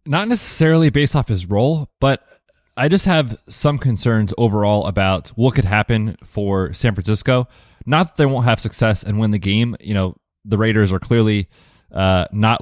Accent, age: American, 20-39